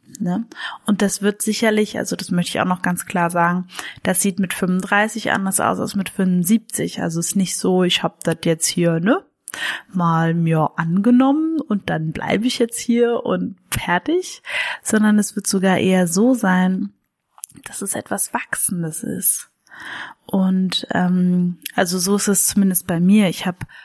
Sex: female